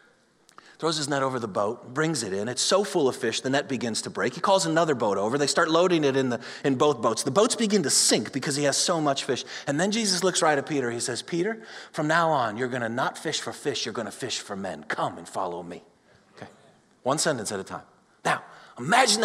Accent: American